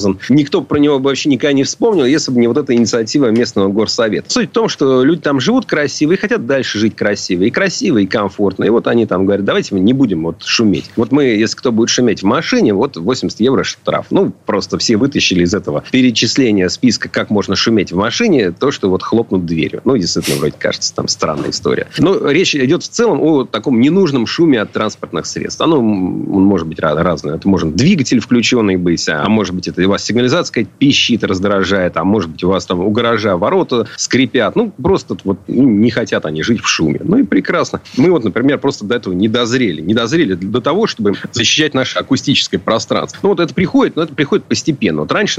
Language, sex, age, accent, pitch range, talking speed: Russian, male, 30-49, native, 95-140 Hz, 210 wpm